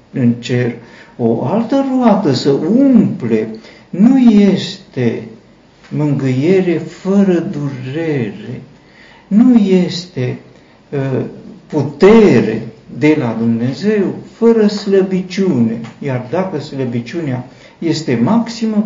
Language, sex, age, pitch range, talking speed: Romanian, male, 60-79, 120-190 Hz, 85 wpm